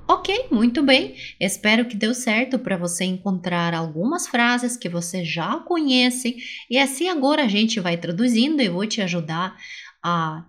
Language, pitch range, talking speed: Portuguese, 185-270 Hz, 160 wpm